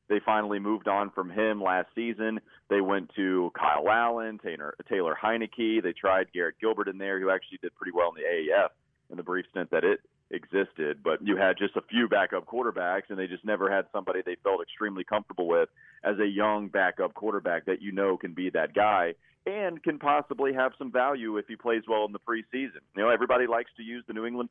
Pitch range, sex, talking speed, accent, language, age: 100-125 Hz, male, 220 wpm, American, English, 30-49